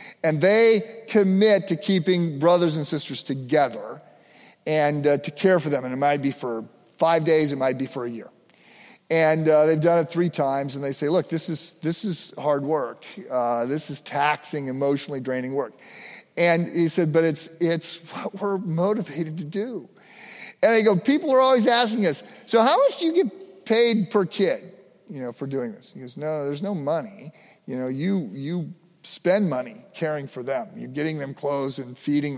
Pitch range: 145-215 Hz